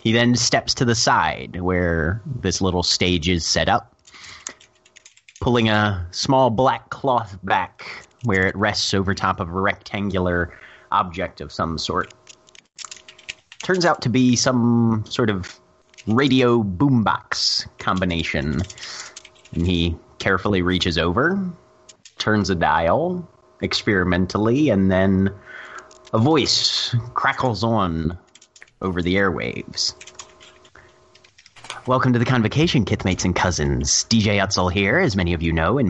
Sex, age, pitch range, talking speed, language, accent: male, 30-49, 90-125 Hz, 125 wpm, English, American